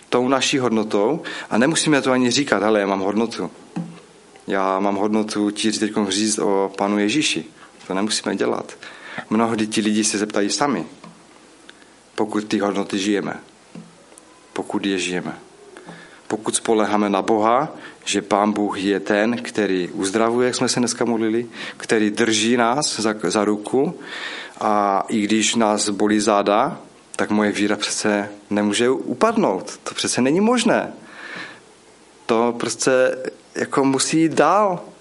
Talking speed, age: 135 wpm, 30-49